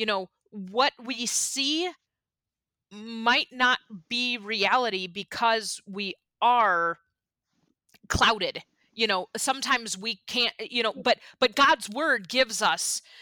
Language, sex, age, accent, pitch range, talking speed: English, female, 30-49, American, 210-285 Hz, 120 wpm